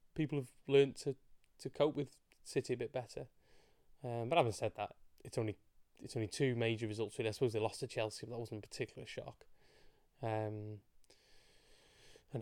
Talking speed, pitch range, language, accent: 190 wpm, 115-130 Hz, English, British